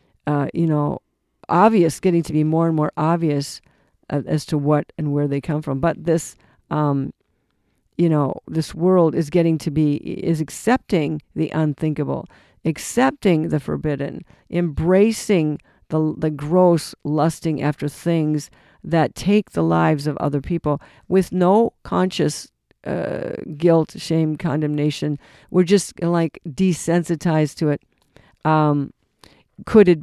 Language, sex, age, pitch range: English, female, 50-69, 150-180 Hz